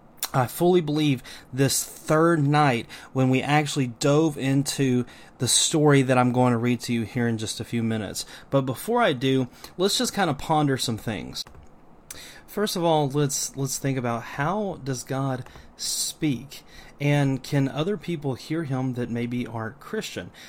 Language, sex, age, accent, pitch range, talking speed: English, male, 30-49, American, 125-155 Hz, 170 wpm